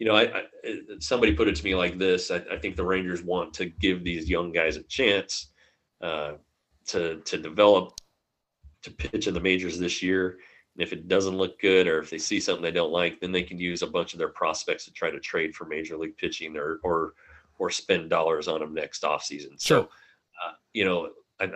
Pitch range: 80-90 Hz